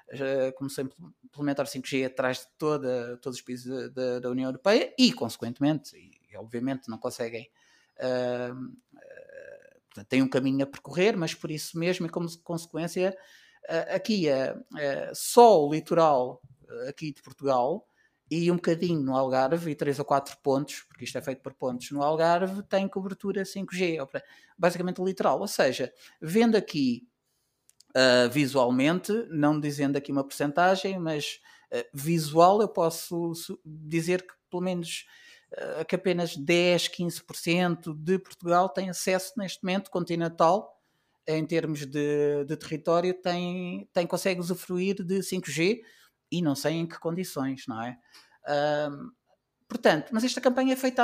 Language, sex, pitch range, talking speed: Portuguese, male, 140-190 Hz, 150 wpm